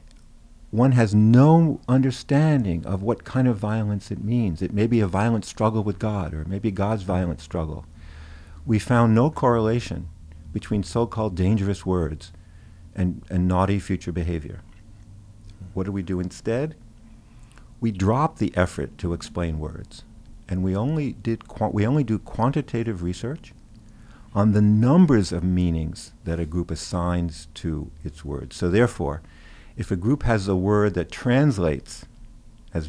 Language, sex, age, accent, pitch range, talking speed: English, male, 50-69, American, 85-115 Hz, 150 wpm